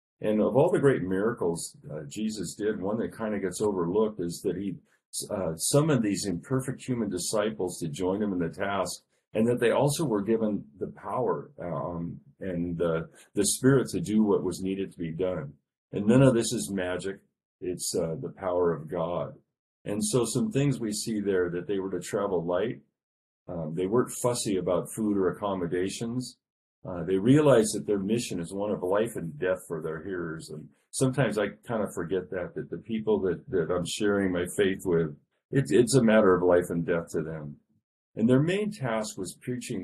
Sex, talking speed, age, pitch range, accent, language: male, 200 wpm, 40-59, 90-110 Hz, American, English